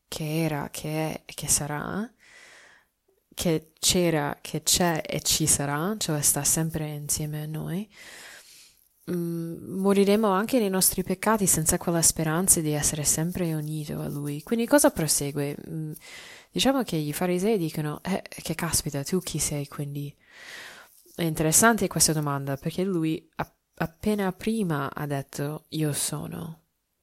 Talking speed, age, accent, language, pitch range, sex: 135 wpm, 20-39, native, Italian, 150-195 Hz, female